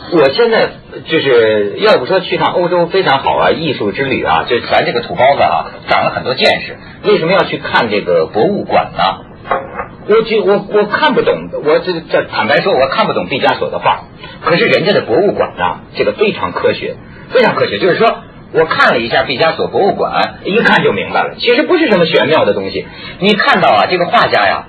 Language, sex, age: Chinese, male, 50-69